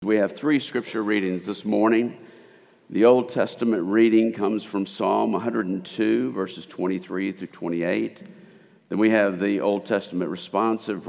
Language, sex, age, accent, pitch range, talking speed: English, male, 50-69, American, 90-115 Hz, 140 wpm